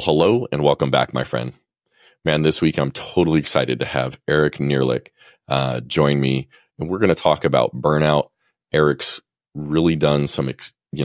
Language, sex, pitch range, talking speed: English, male, 70-85 Hz, 170 wpm